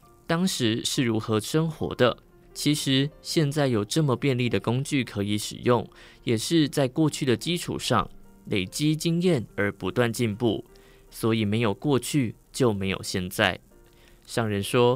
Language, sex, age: Chinese, male, 20-39